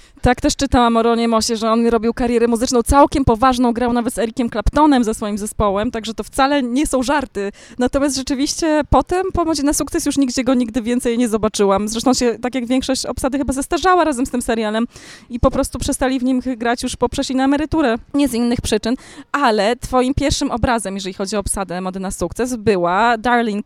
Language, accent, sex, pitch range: Polish, native, female, 200-260 Hz